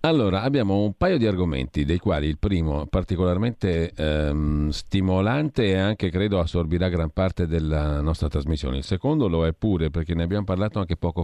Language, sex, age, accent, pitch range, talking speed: Italian, male, 50-69, native, 80-100 Hz, 175 wpm